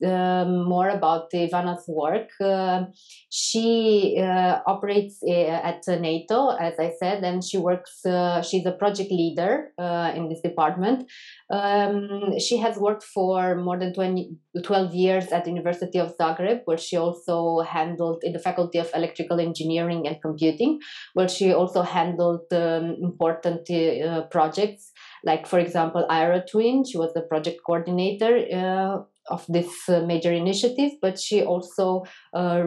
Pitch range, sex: 170-200 Hz, female